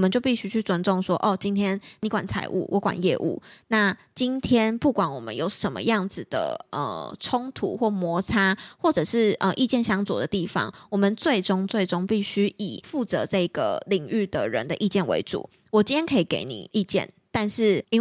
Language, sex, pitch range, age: Chinese, female, 185-220 Hz, 20-39